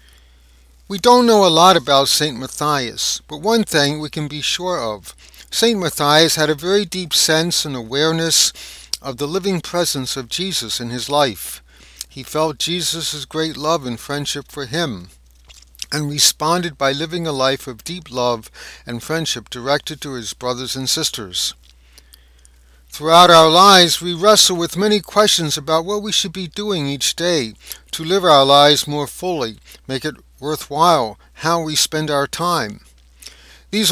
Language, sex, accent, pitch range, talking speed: English, male, American, 115-170 Hz, 160 wpm